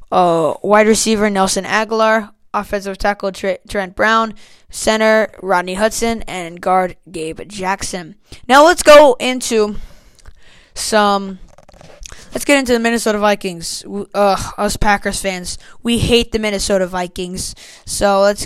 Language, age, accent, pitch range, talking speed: English, 10-29, American, 185-220 Hz, 125 wpm